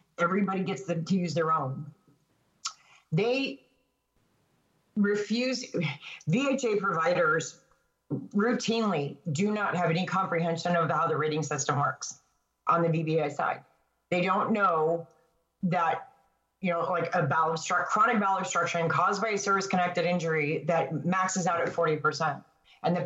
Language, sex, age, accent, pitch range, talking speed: English, female, 40-59, American, 165-205 Hz, 135 wpm